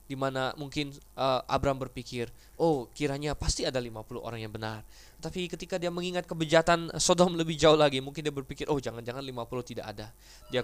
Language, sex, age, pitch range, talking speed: Indonesian, male, 20-39, 115-160 Hz, 180 wpm